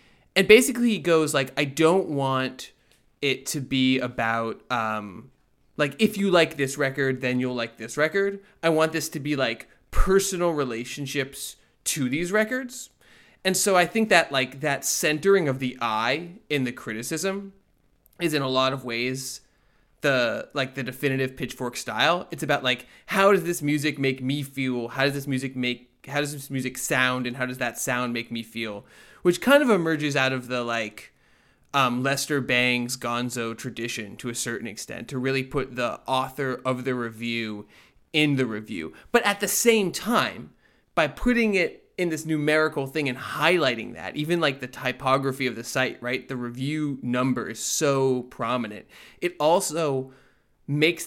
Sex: male